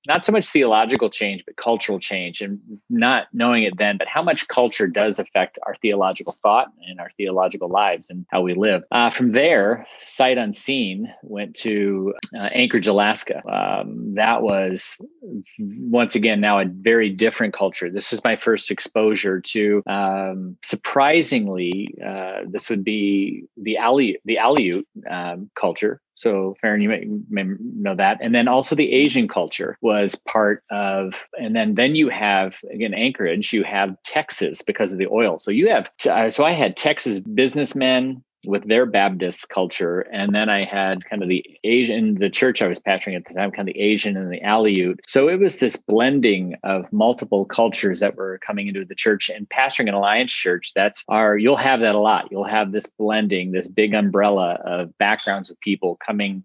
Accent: American